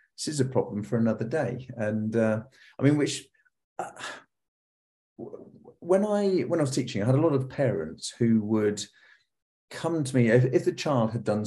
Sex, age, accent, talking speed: male, 40-59, British, 195 wpm